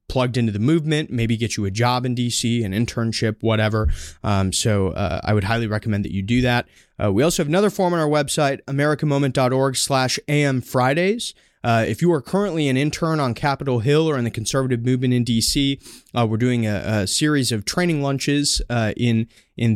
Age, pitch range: 20-39, 105-135 Hz